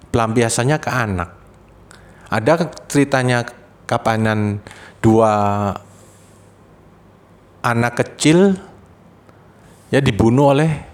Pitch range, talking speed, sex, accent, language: 100-140 Hz, 65 wpm, male, native, Indonesian